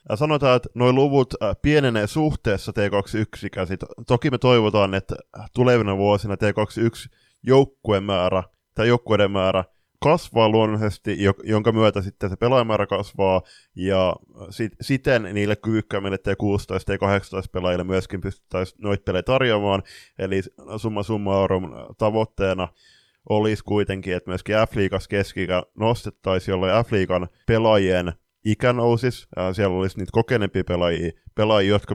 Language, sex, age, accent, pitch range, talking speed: Finnish, male, 20-39, native, 95-110 Hz, 125 wpm